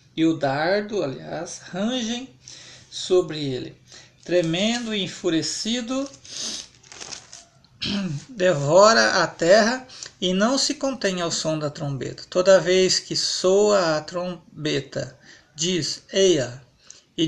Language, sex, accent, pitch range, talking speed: Portuguese, male, Brazilian, 150-190 Hz, 105 wpm